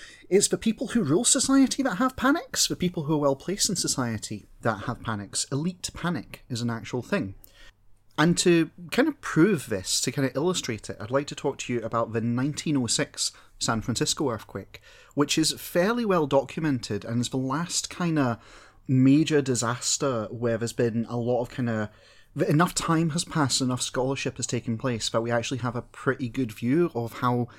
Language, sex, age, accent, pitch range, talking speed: English, male, 30-49, British, 115-155 Hz, 195 wpm